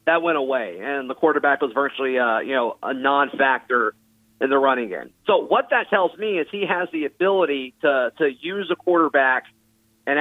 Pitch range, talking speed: 135-180 Hz, 195 wpm